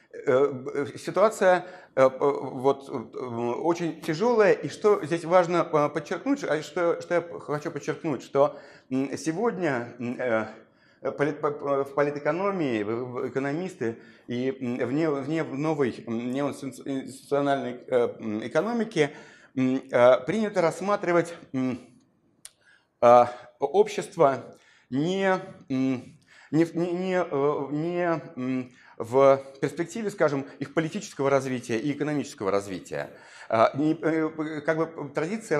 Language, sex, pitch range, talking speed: Russian, male, 130-165 Hz, 75 wpm